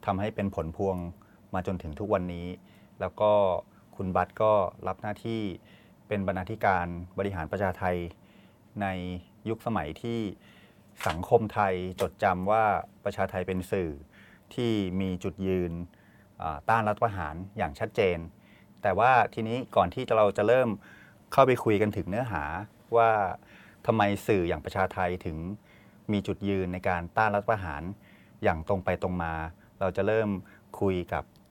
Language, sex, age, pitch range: Thai, male, 30-49, 90-105 Hz